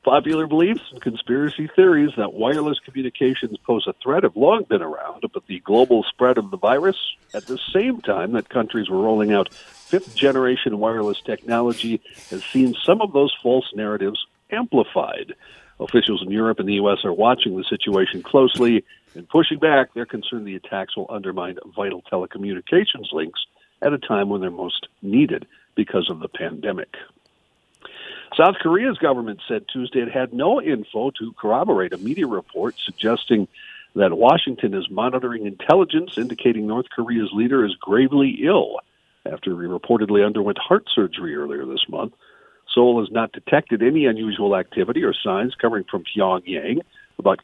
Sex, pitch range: male, 105-135 Hz